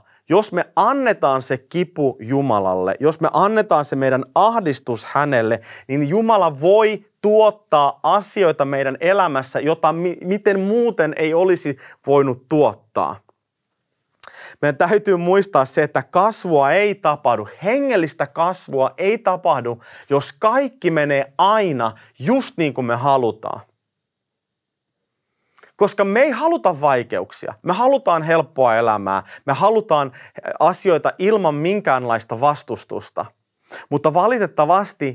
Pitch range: 135-195 Hz